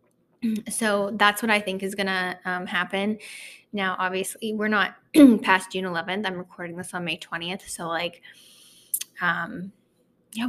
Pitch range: 180-205 Hz